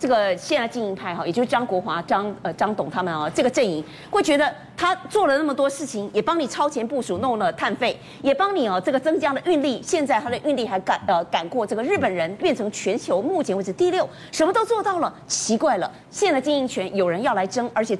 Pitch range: 200-300 Hz